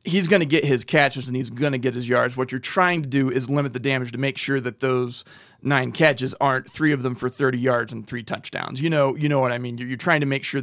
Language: English